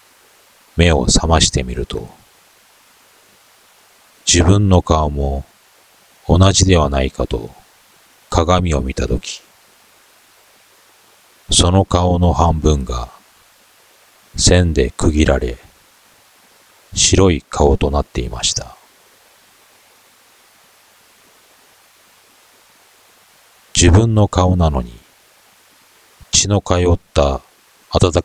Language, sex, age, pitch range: Japanese, male, 40-59, 70-90 Hz